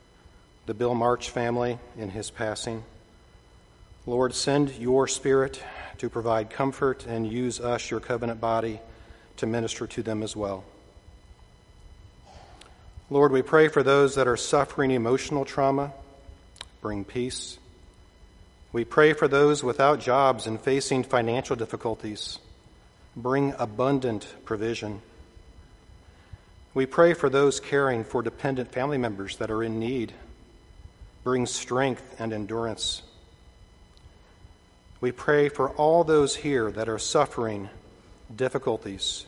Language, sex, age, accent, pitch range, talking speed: English, male, 40-59, American, 105-135 Hz, 120 wpm